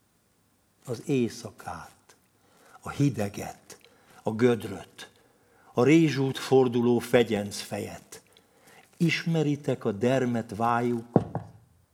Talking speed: 75 wpm